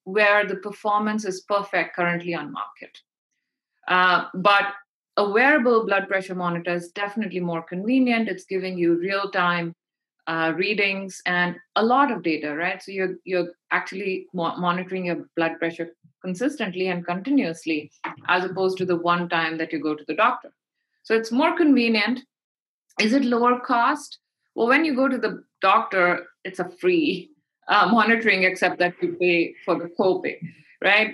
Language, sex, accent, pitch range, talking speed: English, female, Indian, 175-225 Hz, 155 wpm